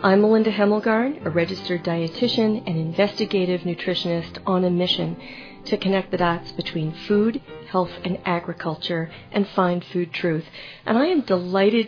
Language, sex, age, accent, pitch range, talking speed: English, female, 40-59, American, 175-210 Hz, 145 wpm